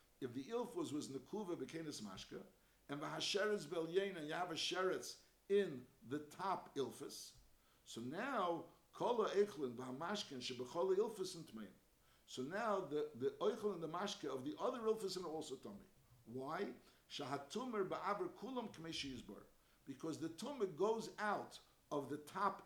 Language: English